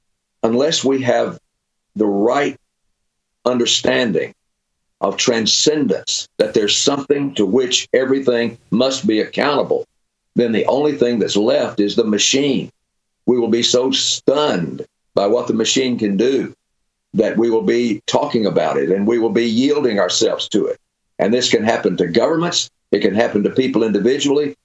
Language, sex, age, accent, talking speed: English, male, 50-69, American, 155 wpm